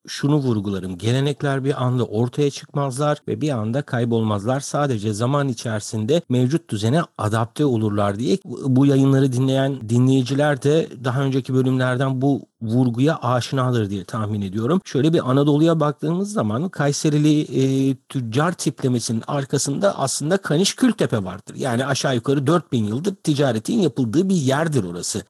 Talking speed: 135 wpm